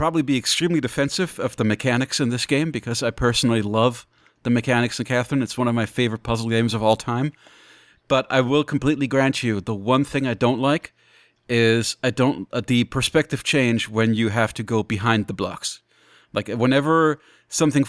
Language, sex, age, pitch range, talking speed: English, male, 40-59, 110-135 Hz, 195 wpm